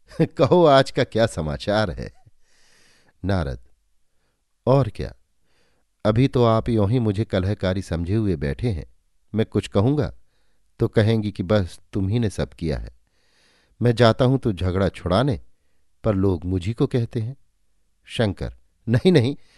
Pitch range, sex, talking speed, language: 80-120 Hz, male, 145 wpm, Hindi